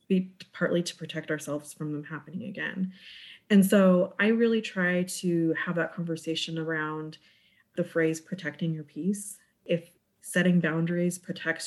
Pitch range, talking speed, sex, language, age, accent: 160-190 Hz, 140 wpm, female, English, 30-49, American